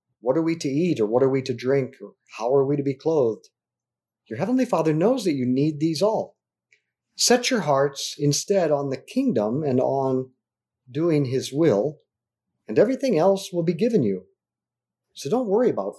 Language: English